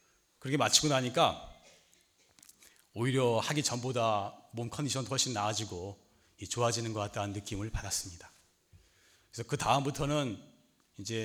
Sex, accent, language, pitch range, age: male, native, Korean, 110-155 Hz, 40-59